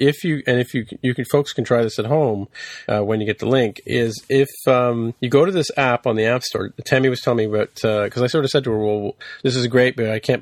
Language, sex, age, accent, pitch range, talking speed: English, male, 40-59, American, 105-130 Hz, 295 wpm